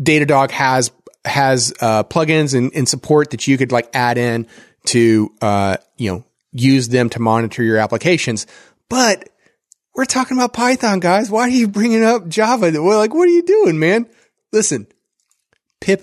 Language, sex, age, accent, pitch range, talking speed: English, male, 30-49, American, 125-185 Hz, 170 wpm